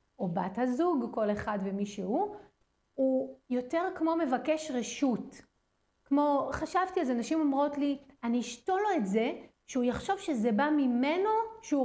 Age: 30-49